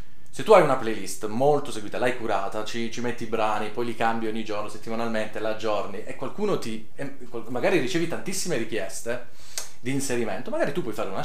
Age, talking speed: 30-49, 190 wpm